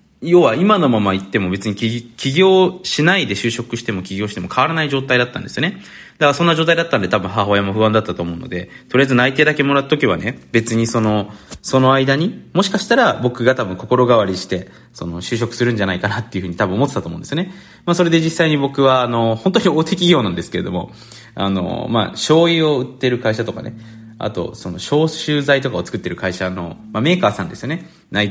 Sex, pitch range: male, 100-155 Hz